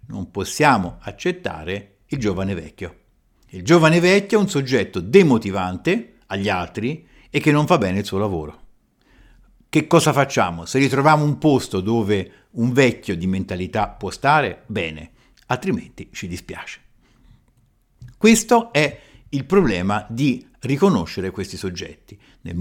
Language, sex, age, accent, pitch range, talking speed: Italian, male, 50-69, native, 95-140 Hz, 135 wpm